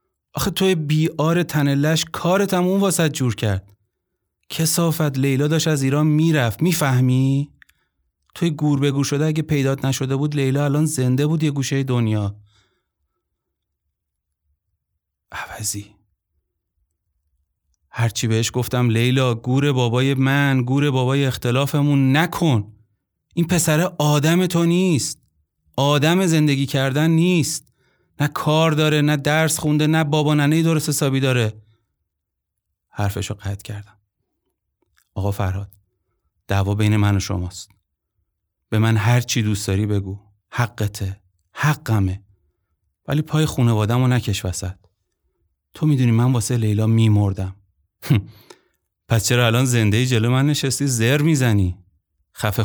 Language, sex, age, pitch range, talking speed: Persian, male, 30-49, 100-150 Hz, 120 wpm